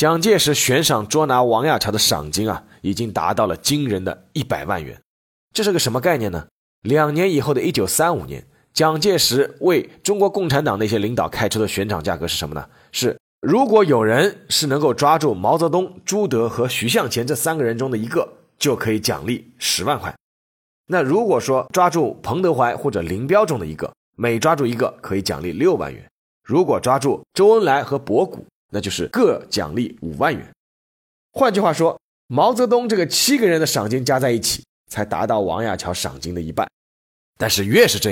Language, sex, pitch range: Chinese, male, 95-155 Hz